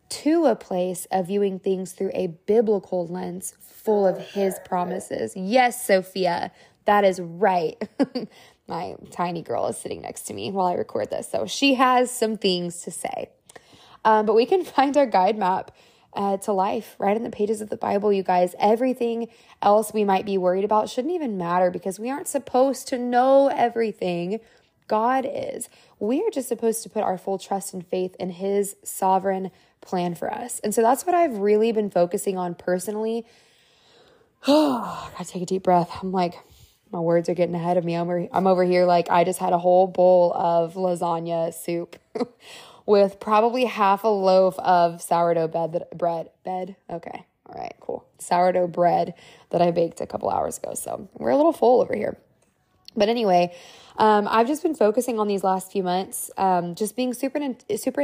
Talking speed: 190 wpm